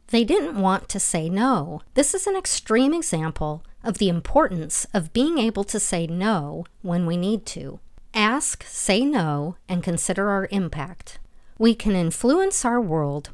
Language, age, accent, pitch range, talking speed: English, 50-69, American, 160-225 Hz, 160 wpm